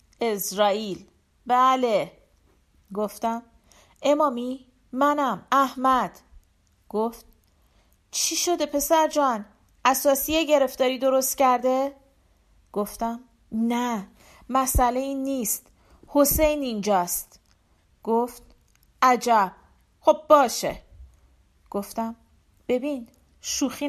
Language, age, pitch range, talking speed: Persian, 40-59, 210-280 Hz, 75 wpm